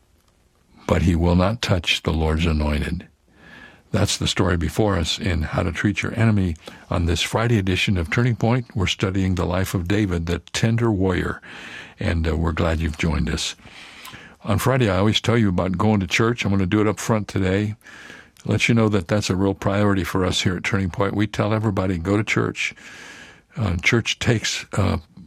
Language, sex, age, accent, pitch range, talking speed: English, male, 60-79, American, 90-115 Hz, 200 wpm